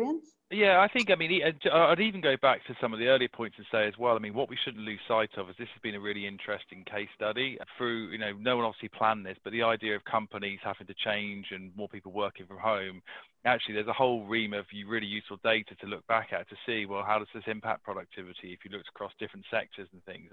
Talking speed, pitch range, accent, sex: 255 wpm, 100-115 Hz, British, male